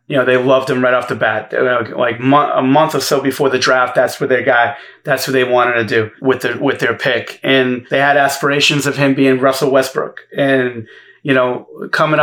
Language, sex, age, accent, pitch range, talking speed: English, male, 30-49, American, 130-155 Hz, 220 wpm